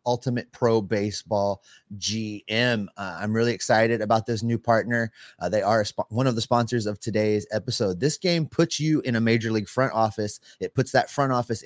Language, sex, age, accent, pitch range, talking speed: English, male, 30-49, American, 105-140 Hz, 190 wpm